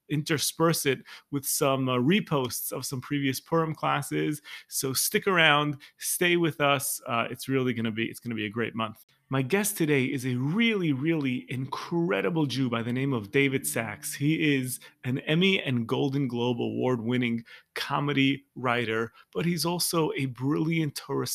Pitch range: 125-155 Hz